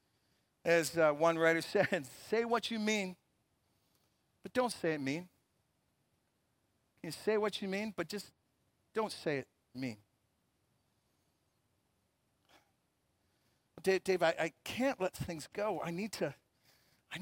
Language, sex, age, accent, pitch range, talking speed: English, male, 50-69, American, 140-205 Hz, 130 wpm